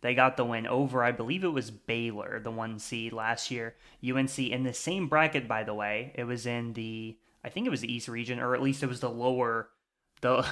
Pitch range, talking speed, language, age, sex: 120-140 Hz, 235 wpm, English, 20-39, male